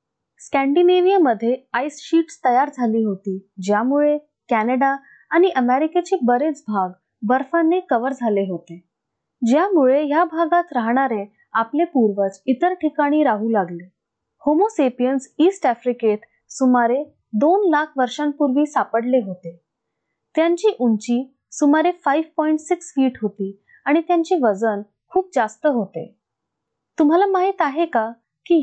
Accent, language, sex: native, Marathi, female